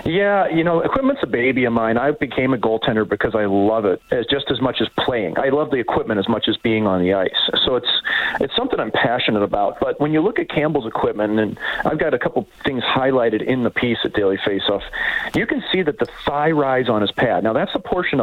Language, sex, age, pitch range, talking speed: English, male, 40-59, 110-150 Hz, 245 wpm